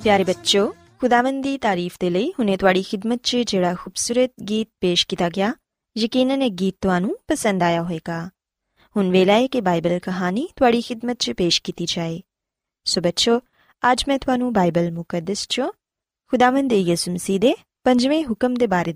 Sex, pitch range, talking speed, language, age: female, 180-260 Hz, 165 wpm, Punjabi, 20-39